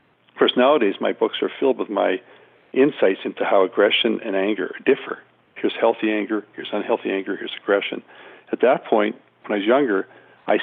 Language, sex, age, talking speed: English, male, 50-69, 180 wpm